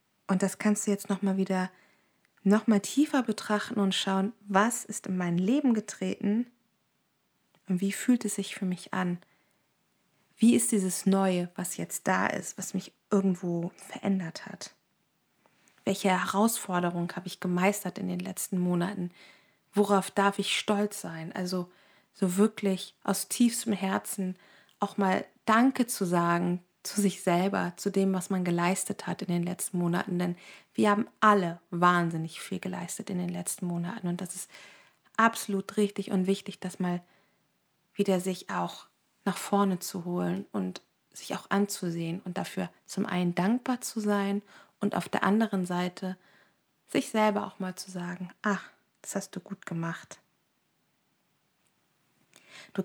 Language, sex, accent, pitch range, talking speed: German, female, German, 180-205 Hz, 150 wpm